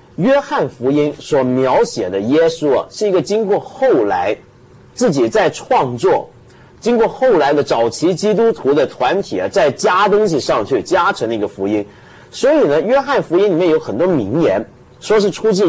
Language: Chinese